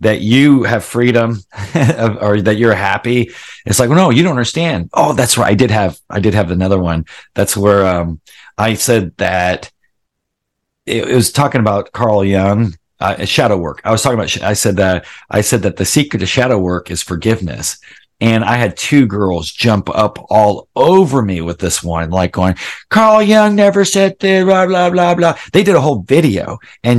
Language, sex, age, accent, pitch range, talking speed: English, male, 40-59, American, 105-150 Hz, 195 wpm